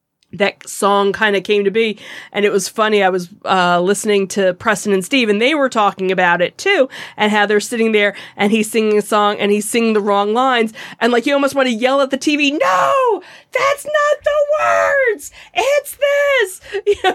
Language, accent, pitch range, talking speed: English, American, 200-255 Hz, 210 wpm